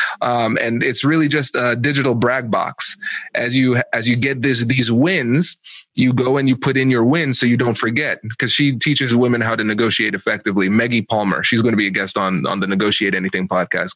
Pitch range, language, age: 115-155 Hz, English, 20-39